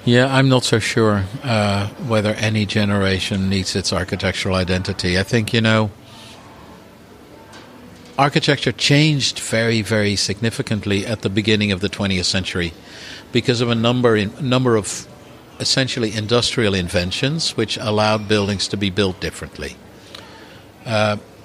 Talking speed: 130 wpm